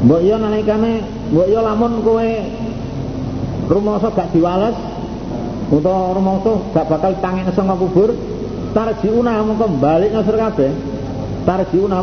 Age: 50-69